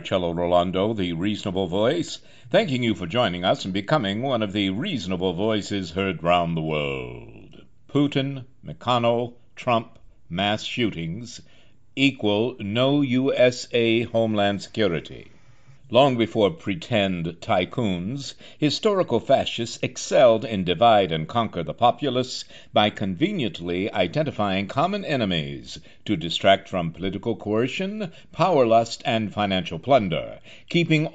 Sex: male